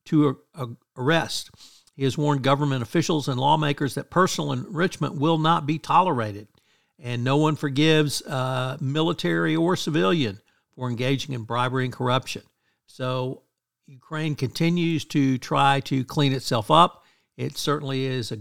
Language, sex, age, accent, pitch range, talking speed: English, male, 60-79, American, 125-155 Hz, 145 wpm